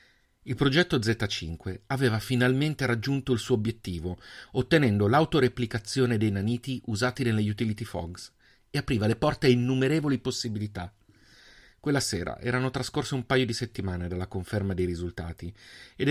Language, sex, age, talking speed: Italian, male, 40-59, 140 wpm